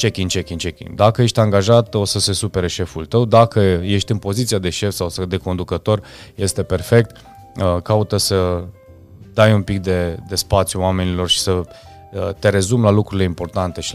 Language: Romanian